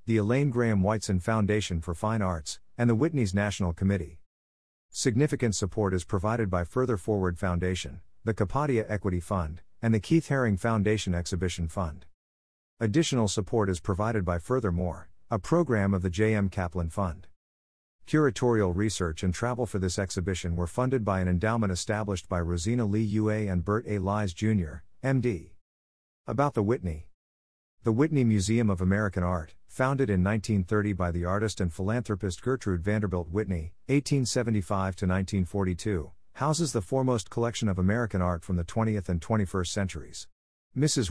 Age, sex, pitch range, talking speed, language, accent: 50-69, male, 90-110 Hz, 150 wpm, English, American